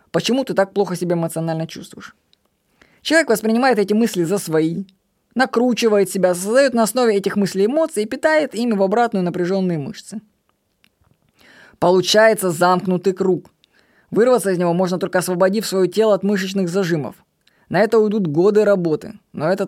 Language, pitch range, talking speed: Russian, 170-215 Hz, 150 wpm